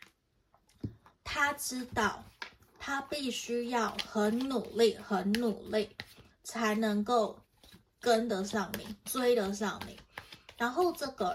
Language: Chinese